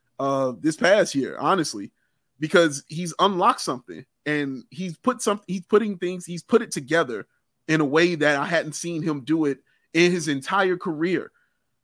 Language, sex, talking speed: English, male, 165 wpm